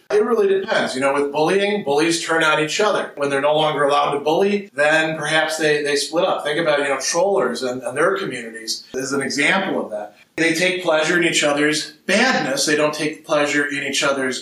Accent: American